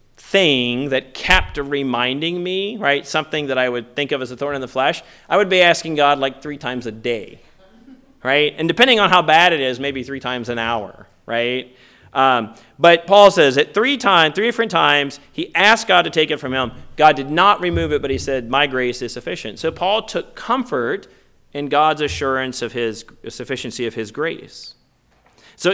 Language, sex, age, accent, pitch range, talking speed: English, male, 30-49, American, 125-180 Hz, 200 wpm